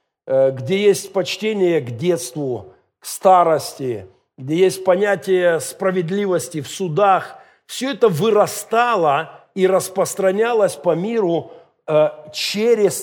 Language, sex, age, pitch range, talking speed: Russian, male, 50-69, 155-200 Hz, 95 wpm